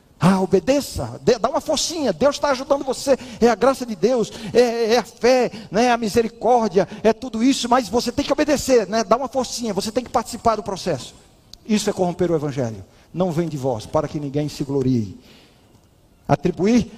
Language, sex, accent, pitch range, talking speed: Portuguese, male, Brazilian, 155-235 Hz, 190 wpm